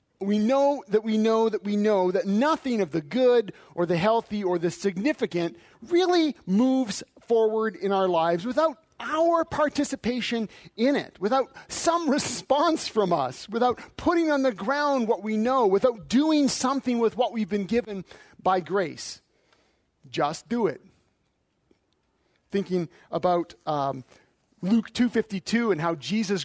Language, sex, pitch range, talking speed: English, male, 180-240 Hz, 145 wpm